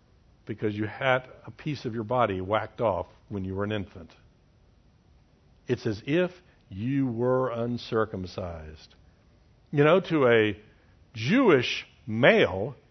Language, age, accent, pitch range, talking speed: English, 60-79, American, 95-150 Hz, 125 wpm